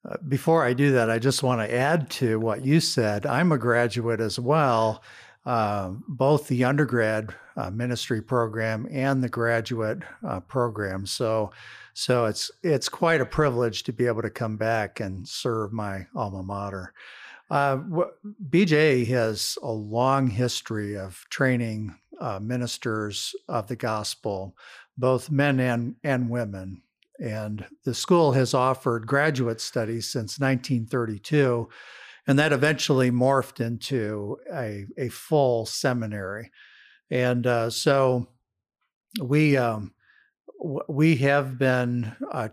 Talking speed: 135 wpm